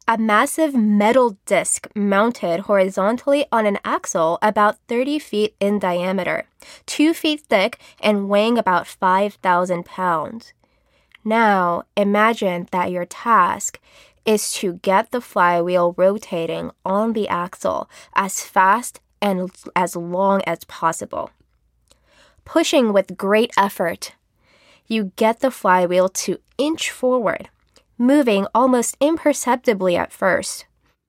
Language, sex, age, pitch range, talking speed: English, female, 20-39, 190-250 Hz, 115 wpm